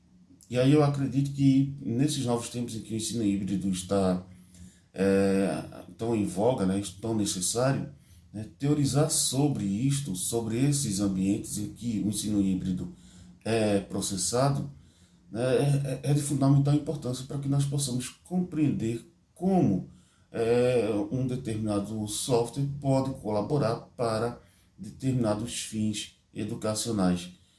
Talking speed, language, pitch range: 115 wpm, Portuguese, 95-120 Hz